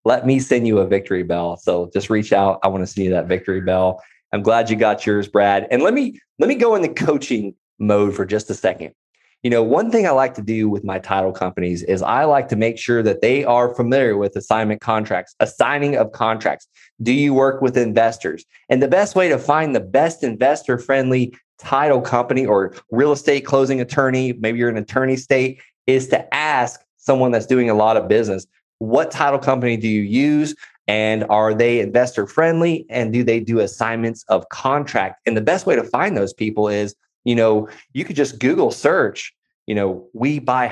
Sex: male